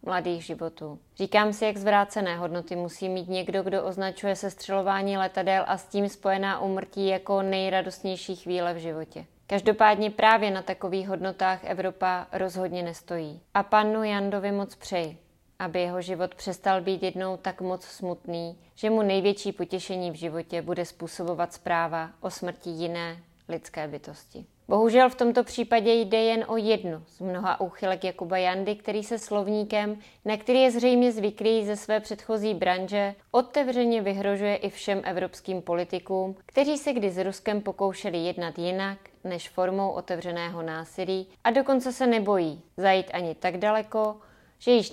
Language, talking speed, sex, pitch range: Czech, 150 wpm, female, 180-210 Hz